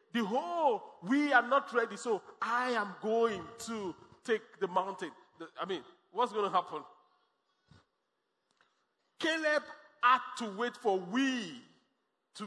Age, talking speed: 40-59, 125 wpm